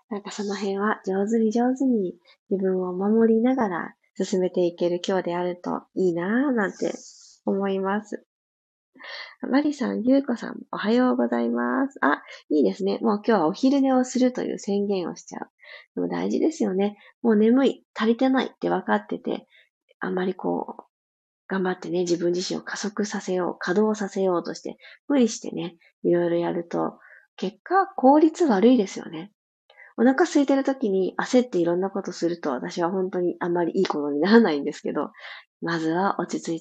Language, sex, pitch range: Japanese, female, 175-245 Hz